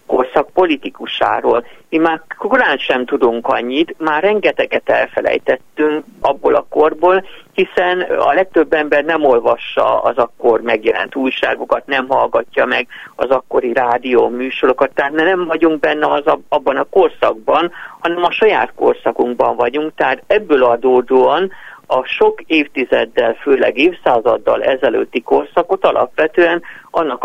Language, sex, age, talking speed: Hungarian, male, 50-69, 120 wpm